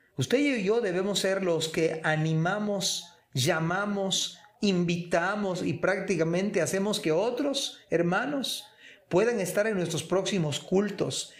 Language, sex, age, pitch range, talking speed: Spanish, male, 40-59, 155-195 Hz, 120 wpm